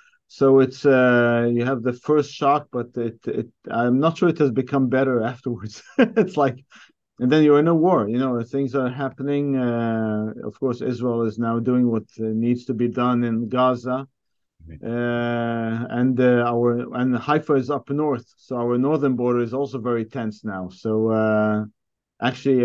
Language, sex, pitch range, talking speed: English, male, 115-135 Hz, 180 wpm